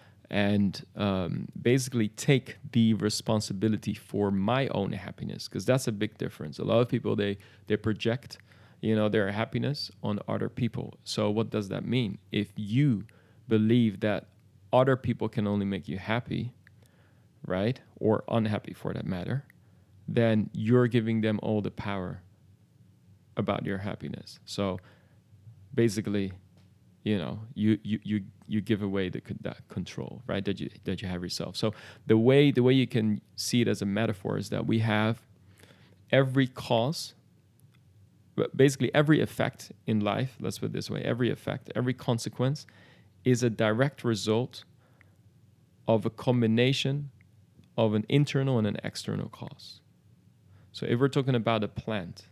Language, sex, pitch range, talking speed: English, male, 100-120 Hz, 155 wpm